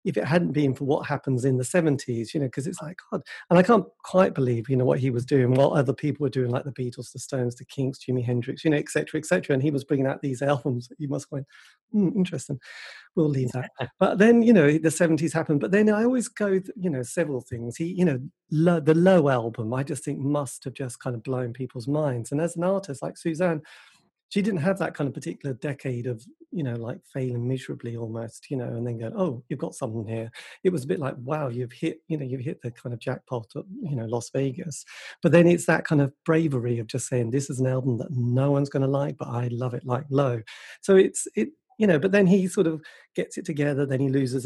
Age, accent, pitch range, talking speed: 40-59, British, 125-160 Hz, 260 wpm